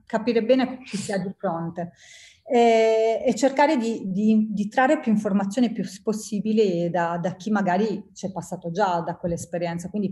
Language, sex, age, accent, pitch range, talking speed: Italian, female, 30-49, native, 190-250 Hz, 165 wpm